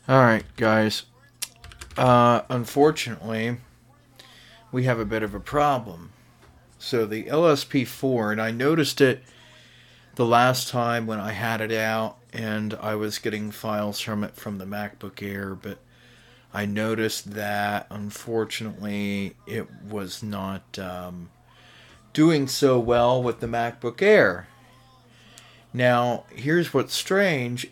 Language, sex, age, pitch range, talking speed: English, male, 40-59, 105-130 Hz, 125 wpm